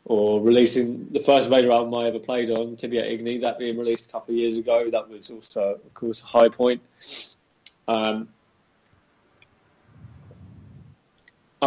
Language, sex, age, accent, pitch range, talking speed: English, male, 20-39, British, 105-125 Hz, 150 wpm